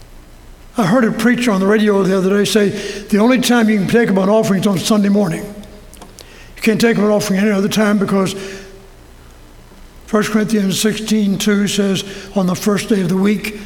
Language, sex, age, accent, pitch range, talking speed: English, male, 60-79, American, 190-225 Hz, 200 wpm